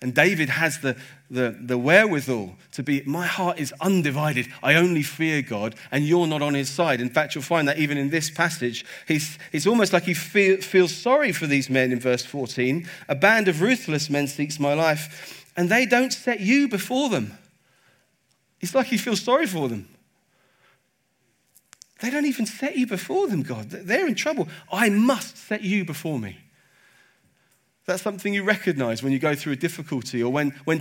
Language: English